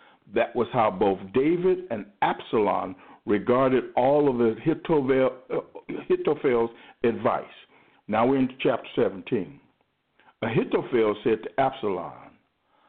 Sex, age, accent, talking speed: male, 60-79, American, 100 wpm